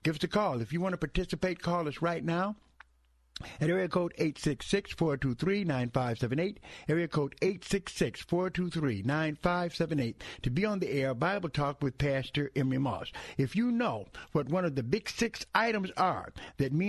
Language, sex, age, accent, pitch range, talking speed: English, male, 60-79, American, 140-190 Hz, 155 wpm